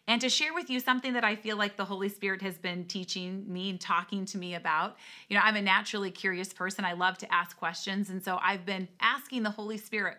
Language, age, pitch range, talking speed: English, 30-49, 180-230 Hz, 245 wpm